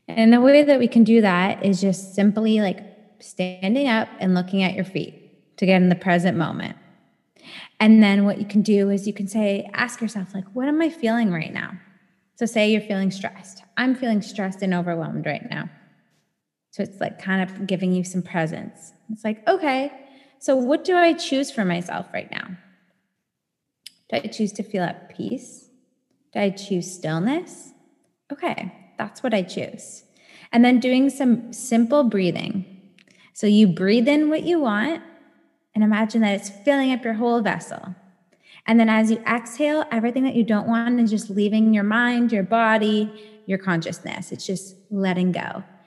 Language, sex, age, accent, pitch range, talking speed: English, female, 20-39, American, 190-235 Hz, 180 wpm